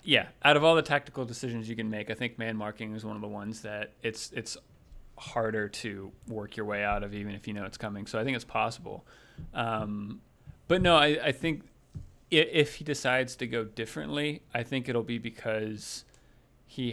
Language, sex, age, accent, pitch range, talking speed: English, male, 30-49, American, 105-130 Hz, 205 wpm